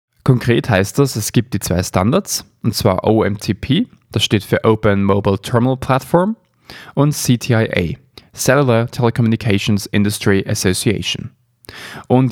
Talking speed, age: 120 wpm, 20-39